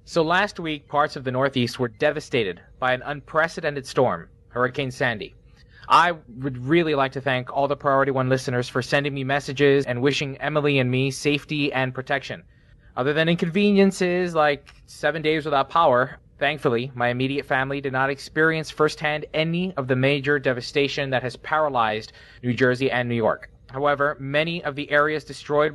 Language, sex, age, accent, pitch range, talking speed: English, male, 20-39, American, 125-155 Hz, 170 wpm